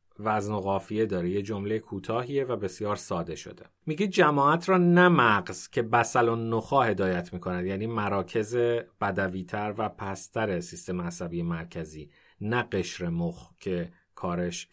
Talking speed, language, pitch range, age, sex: 135 wpm, Persian, 95-115 Hz, 30-49, male